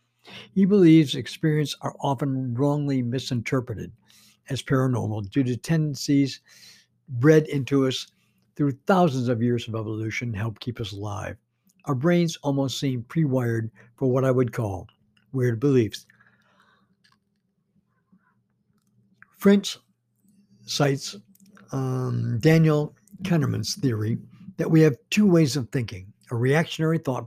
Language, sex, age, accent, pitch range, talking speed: English, male, 60-79, American, 115-155 Hz, 115 wpm